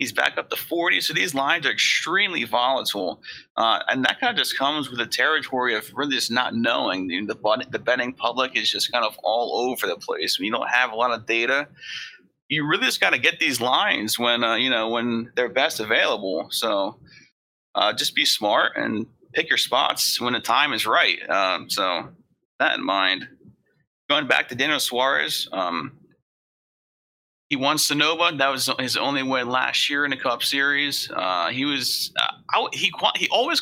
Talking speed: 195 wpm